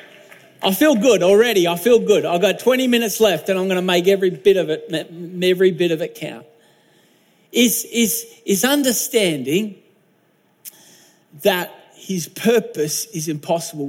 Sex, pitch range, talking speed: male, 160-220 Hz, 150 wpm